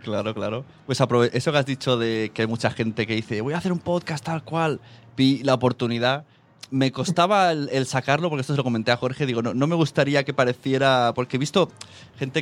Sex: male